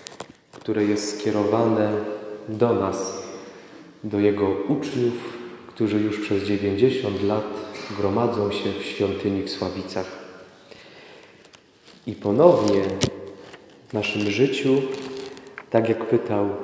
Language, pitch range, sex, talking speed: Polish, 105-130 Hz, male, 95 wpm